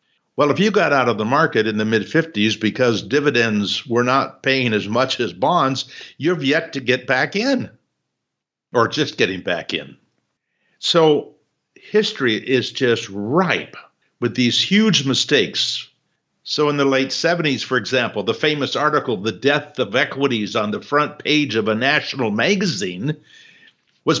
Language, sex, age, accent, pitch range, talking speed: English, male, 60-79, American, 115-155 Hz, 160 wpm